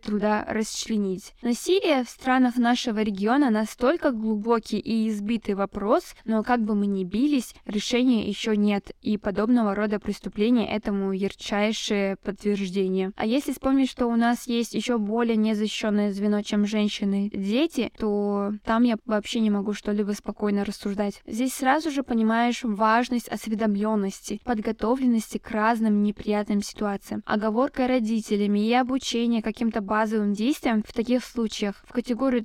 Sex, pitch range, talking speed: female, 210-245 Hz, 135 wpm